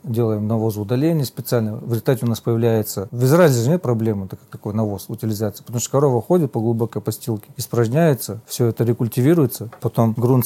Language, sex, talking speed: Russian, male, 185 wpm